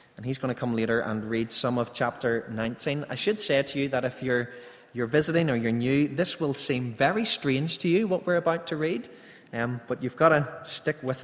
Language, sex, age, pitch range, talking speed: English, male, 20-39, 115-150 Hz, 235 wpm